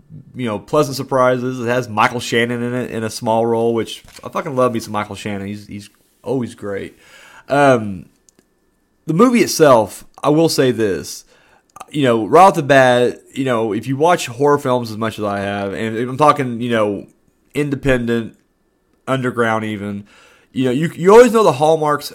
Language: English